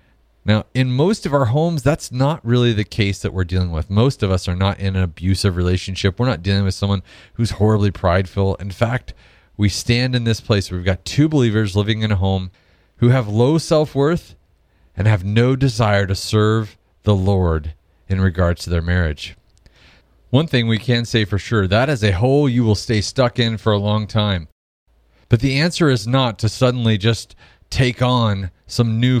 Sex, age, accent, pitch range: male, 30-49, American, 90-120 Hz